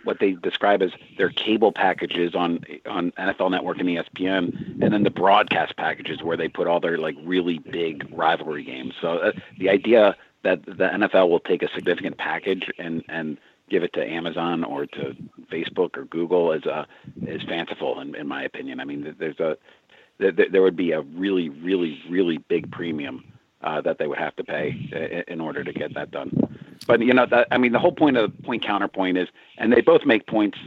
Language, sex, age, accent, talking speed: English, male, 50-69, American, 205 wpm